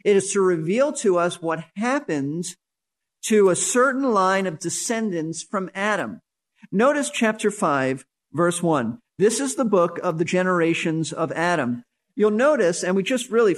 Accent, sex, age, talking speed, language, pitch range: American, male, 50-69, 160 wpm, English, 170-220 Hz